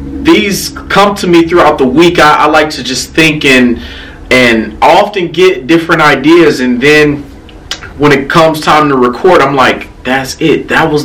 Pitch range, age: 100-140 Hz, 30-49